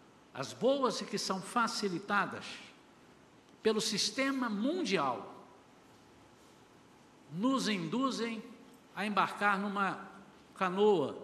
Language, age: Portuguese, 60-79